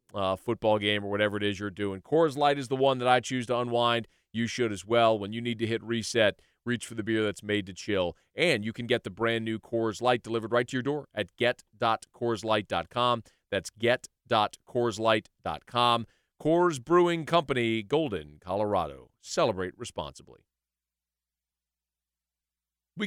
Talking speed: 165 wpm